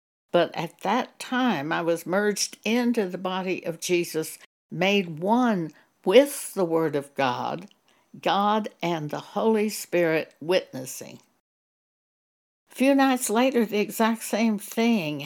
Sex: female